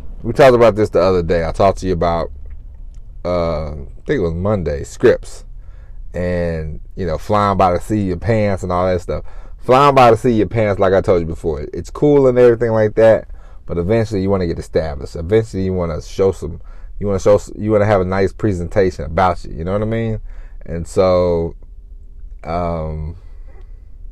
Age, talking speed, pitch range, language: 30-49, 205 wpm, 85-105 Hz, English